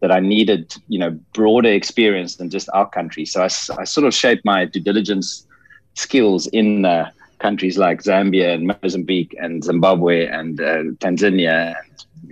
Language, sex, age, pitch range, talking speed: English, male, 30-49, 90-110 Hz, 170 wpm